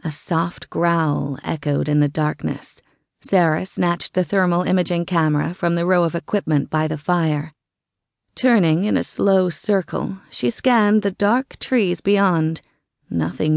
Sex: female